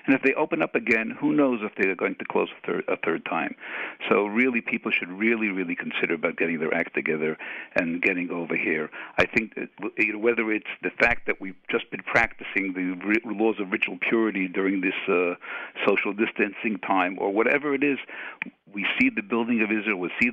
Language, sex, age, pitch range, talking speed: English, male, 60-79, 95-125 Hz, 205 wpm